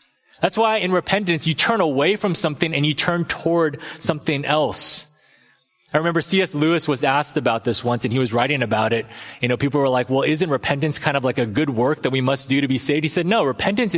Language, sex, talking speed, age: English, male, 235 wpm, 30-49